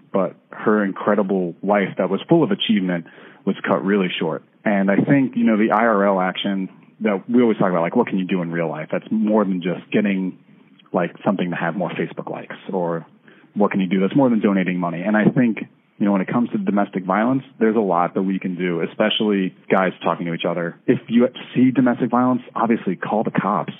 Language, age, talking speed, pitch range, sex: English, 30-49, 225 wpm, 95-120 Hz, male